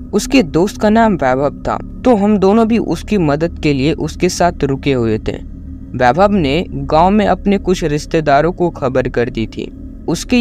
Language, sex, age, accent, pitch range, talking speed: Hindi, female, 10-29, native, 125-175 Hz, 185 wpm